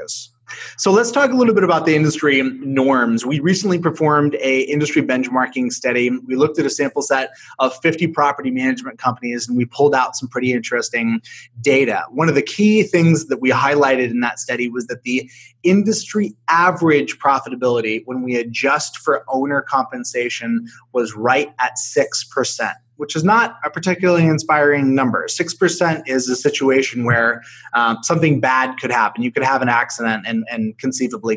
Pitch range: 125-165 Hz